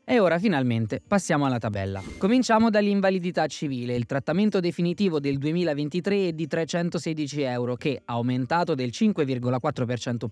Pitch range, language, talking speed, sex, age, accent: 125-170 Hz, Italian, 130 wpm, male, 20-39, native